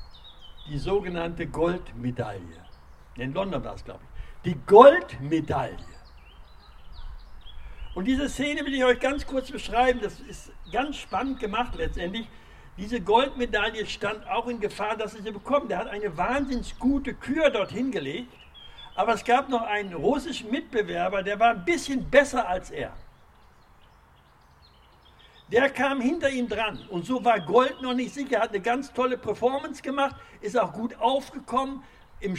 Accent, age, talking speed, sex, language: German, 60-79, 150 wpm, male, German